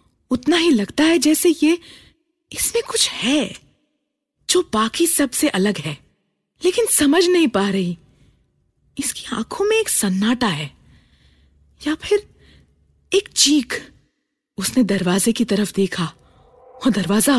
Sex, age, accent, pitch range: female, 30-49, native, 205-300 Hz